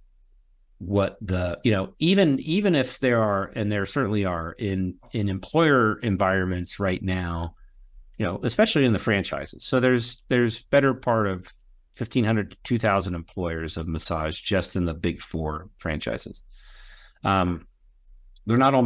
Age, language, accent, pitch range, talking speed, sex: 50-69, English, American, 95-115 Hz, 150 wpm, male